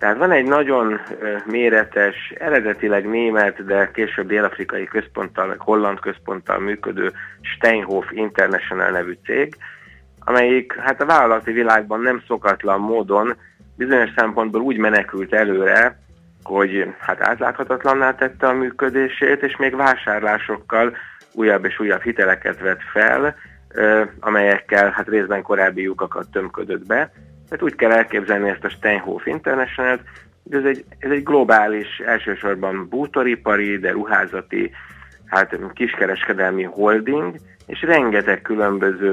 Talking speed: 120 wpm